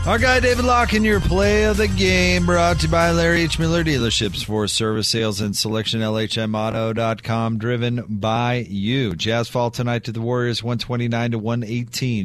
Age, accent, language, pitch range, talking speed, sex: 30-49, American, English, 120-150 Hz, 175 wpm, male